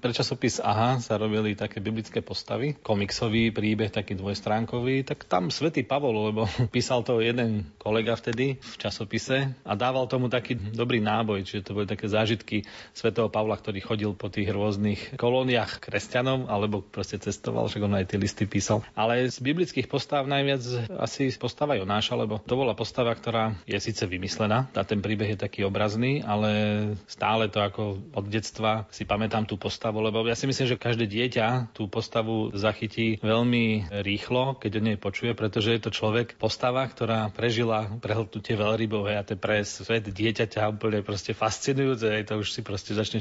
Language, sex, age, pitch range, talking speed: Slovak, male, 30-49, 105-120 Hz, 170 wpm